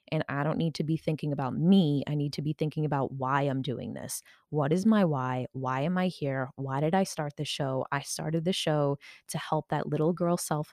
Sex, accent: female, American